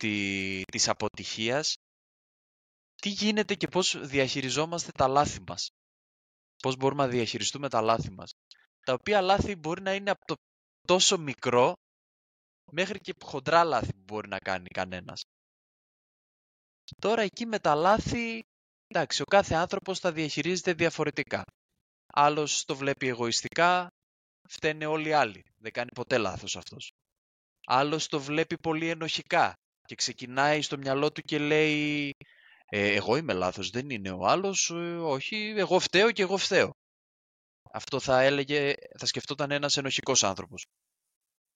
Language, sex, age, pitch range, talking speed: Greek, male, 20-39, 110-170 Hz, 140 wpm